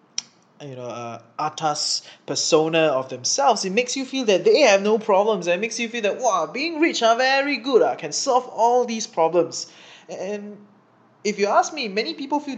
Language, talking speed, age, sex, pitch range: English, 195 wpm, 20-39, male, 155-220 Hz